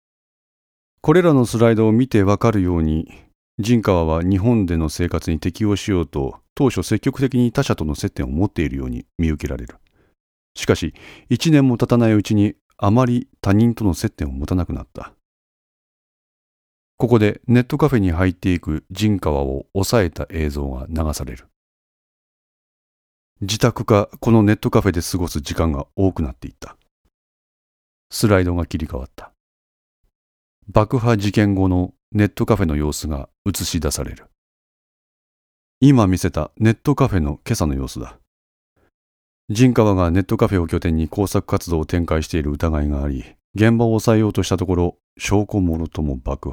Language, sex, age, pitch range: Japanese, male, 40-59, 75-105 Hz